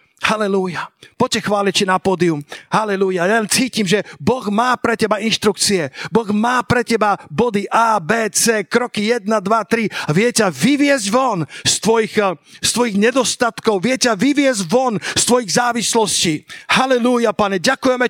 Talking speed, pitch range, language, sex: 145 wpm, 185-240 Hz, Slovak, male